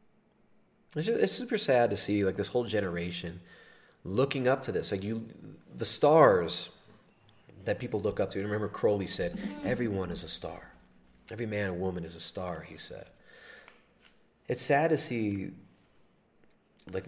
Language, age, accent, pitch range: English, 30-49, American, 95-130 Hz